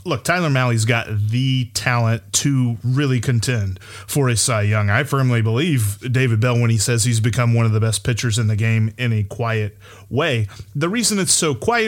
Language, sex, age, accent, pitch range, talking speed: English, male, 30-49, American, 115-160 Hz, 200 wpm